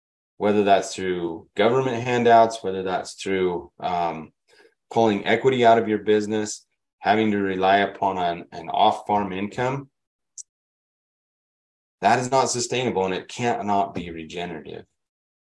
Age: 20-39